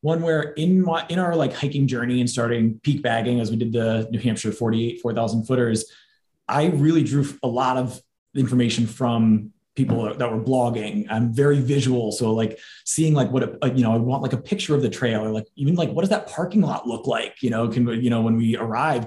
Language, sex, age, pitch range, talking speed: English, male, 20-39, 115-140 Hz, 230 wpm